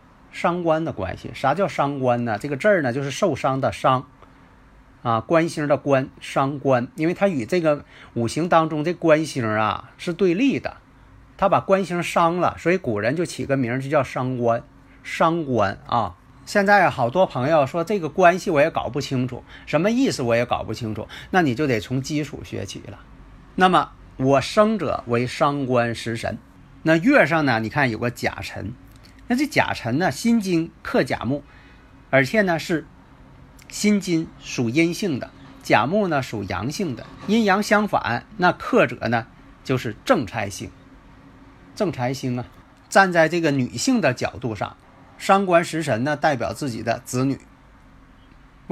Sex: male